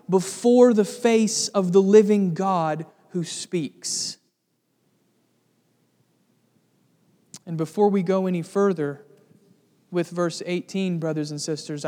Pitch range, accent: 165-195 Hz, American